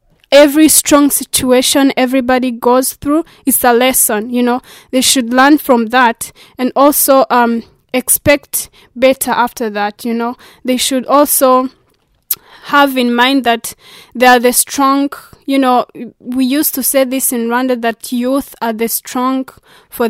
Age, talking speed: 20-39, 150 wpm